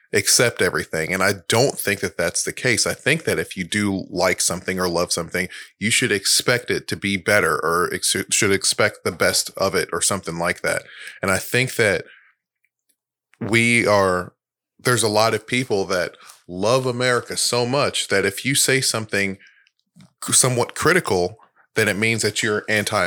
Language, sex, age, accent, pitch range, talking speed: English, male, 30-49, American, 95-115 Hz, 175 wpm